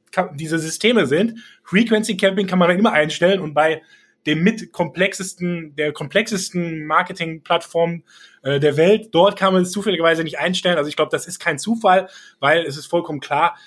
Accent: German